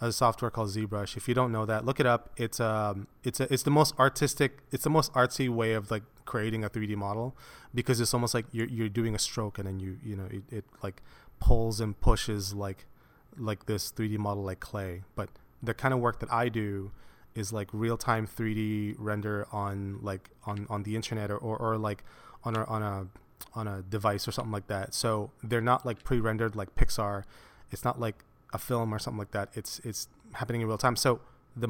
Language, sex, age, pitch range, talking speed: English, male, 20-39, 105-125 Hz, 220 wpm